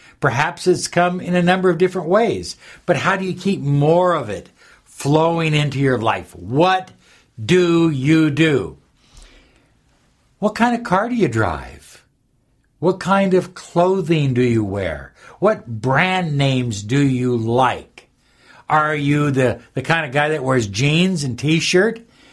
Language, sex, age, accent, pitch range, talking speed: English, male, 60-79, American, 125-180 Hz, 155 wpm